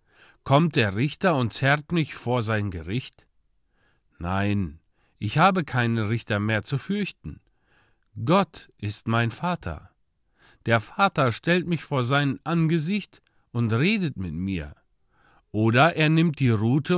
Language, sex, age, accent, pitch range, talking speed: German, male, 50-69, German, 105-165 Hz, 130 wpm